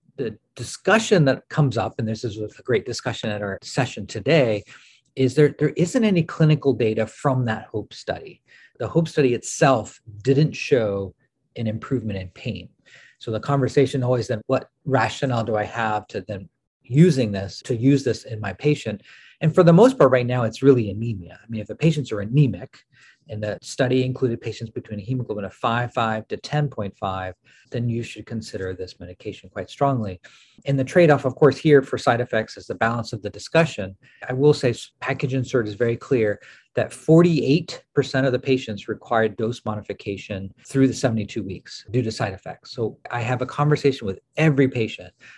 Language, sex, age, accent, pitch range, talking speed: English, male, 40-59, American, 110-135 Hz, 185 wpm